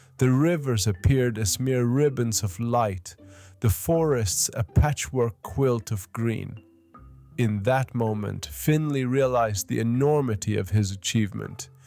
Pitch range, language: 105-130 Hz, English